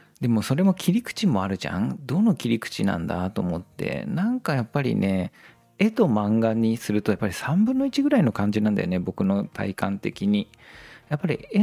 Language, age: Japanese, 40-59